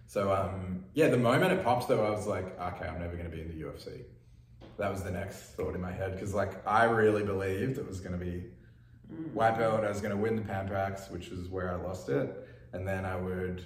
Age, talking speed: 20-39, 250 wpm